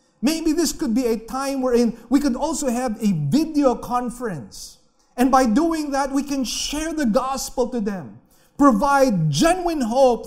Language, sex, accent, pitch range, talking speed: English, male, Filipino, 235-300 Hz, 165 wpm